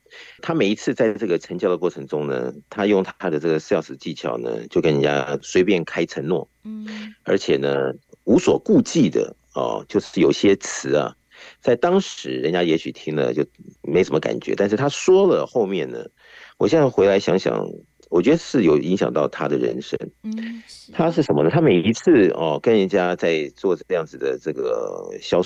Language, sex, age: Chinese, male, 50-69